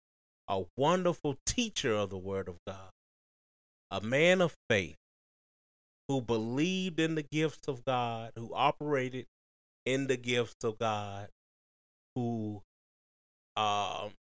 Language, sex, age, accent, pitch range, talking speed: English, male, 30-49, American, 95-140 Hz, 120 wpm